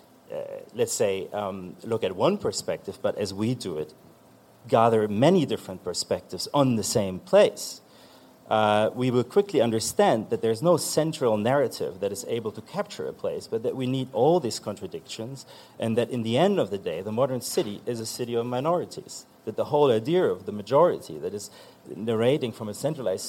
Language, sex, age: English, male, 40-59